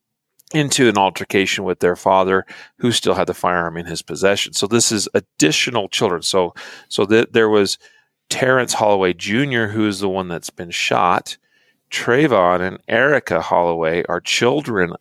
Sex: male